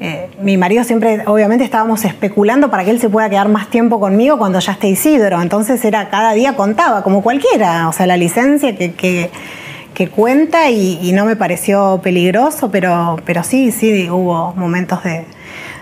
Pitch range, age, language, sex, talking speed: 180-215 Hz, 20-39, Spanish, female, 180 wpm